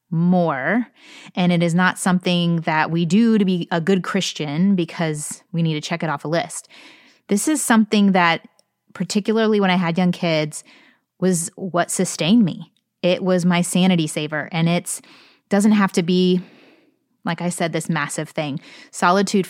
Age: 20-39